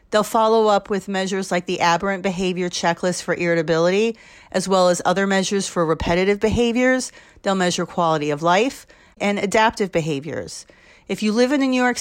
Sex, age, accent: female, 40-59, American